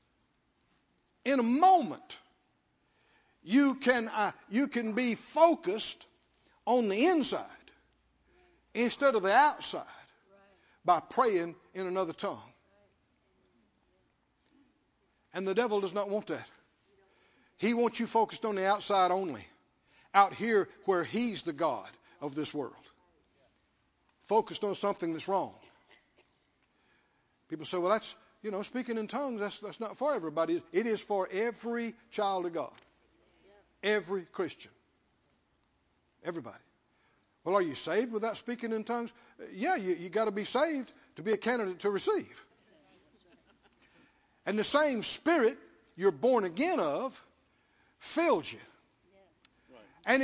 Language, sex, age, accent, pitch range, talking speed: English, male, 60-79, American, 195-275 Hz, 130 wpm